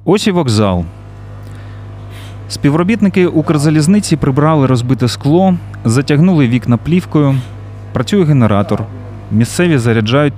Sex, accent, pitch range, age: male, native, 100-140 Hz, 30-49